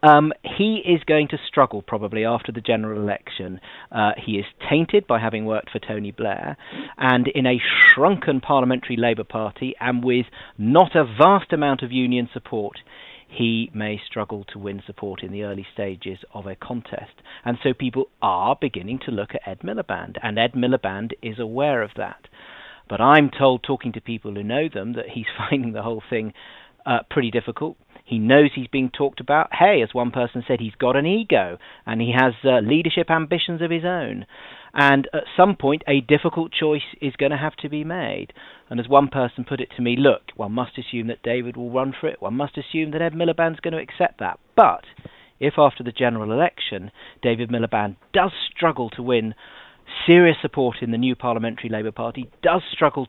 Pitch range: 115-145 Hz